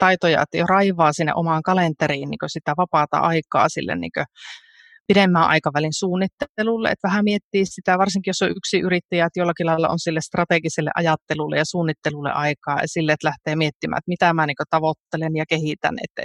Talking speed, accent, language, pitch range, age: 175 wpm, native, Finnish, 155-190 Hz, 30-49